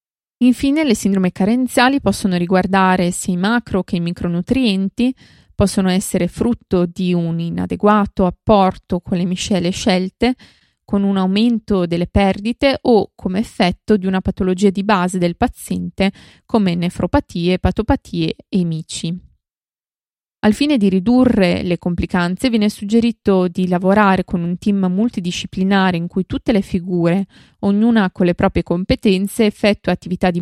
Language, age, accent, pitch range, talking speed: Italian, 20-39, native, 180-220 Hz, 140 wpm